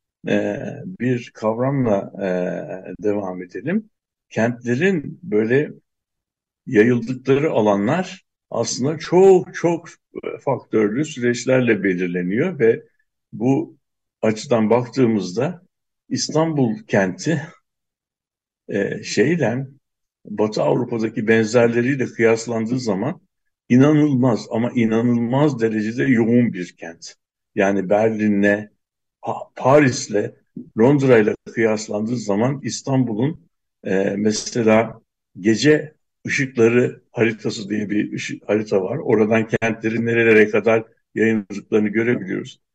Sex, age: male, 60-79